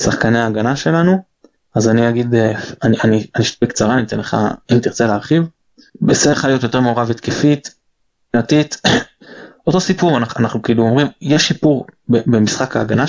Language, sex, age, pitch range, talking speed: Hebrew, male, 20-39, 115-175 Hz, 160 wpm